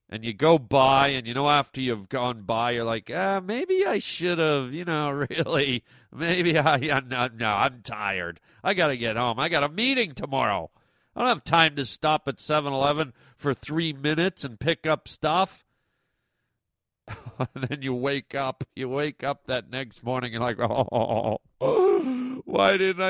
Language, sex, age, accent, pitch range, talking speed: English, male, 50-69, American, 130-180 Hz, 190 wpm